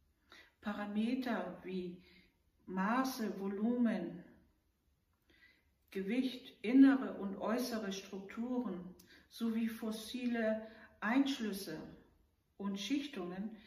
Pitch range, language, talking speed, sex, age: 190-235 Hz, German, 60 wpm, female, 60-79